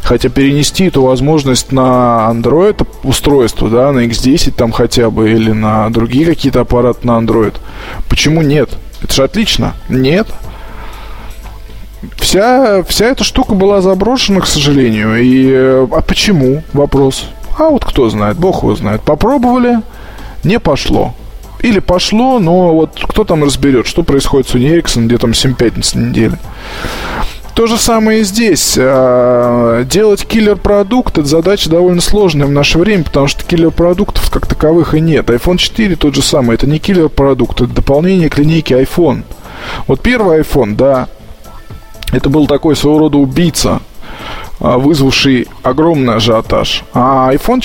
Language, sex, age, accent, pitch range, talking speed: Russian, male, 20-39, native, 125-180 Hz, 140 wpm